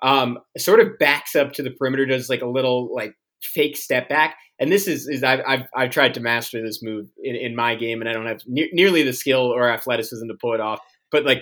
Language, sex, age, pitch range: English, male, 20-39, 115-140 Hz